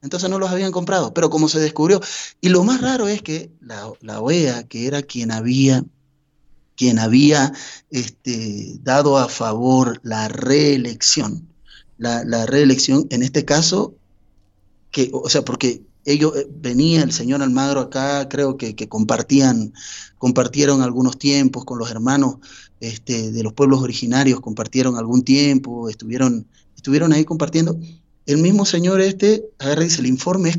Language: Spanish